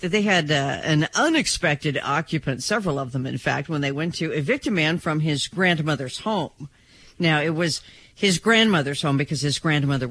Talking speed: 190 wpm